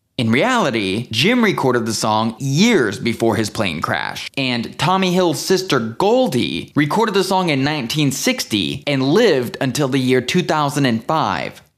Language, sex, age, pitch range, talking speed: English, male, 20-39, 120-170 Hz, 140 wpm